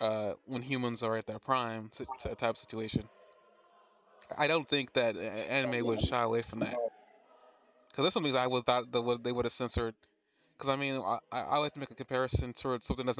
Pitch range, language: 115-140 Hz, English